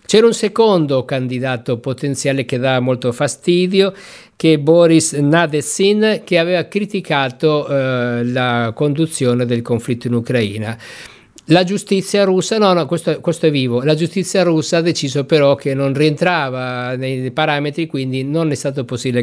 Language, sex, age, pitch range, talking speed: Italian, male, 50-69, 125-165 Hz, 150 wpm